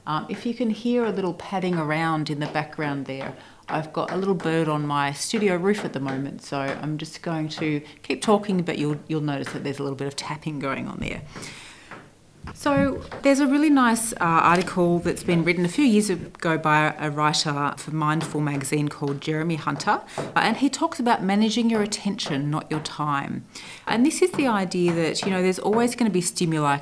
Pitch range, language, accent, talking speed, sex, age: 150-210 Hz, English, Australian, 210 wpm, female, 30-49